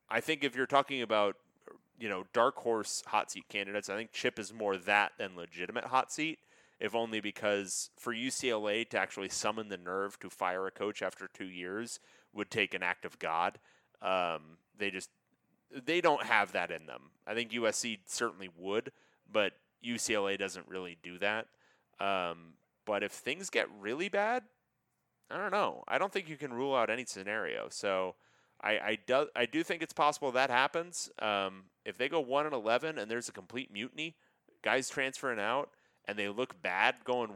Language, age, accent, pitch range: English, 30-49, American, 100-130 Hz